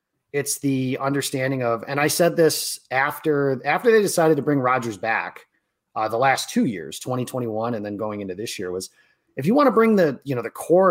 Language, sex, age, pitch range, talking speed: English, male, 30-49, 115-145 Hz, 215 wpm